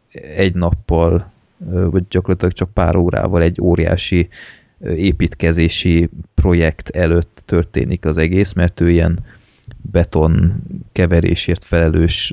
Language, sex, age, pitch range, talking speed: Hungarian, male, 20-39, 85-100 Hz, 100 wpm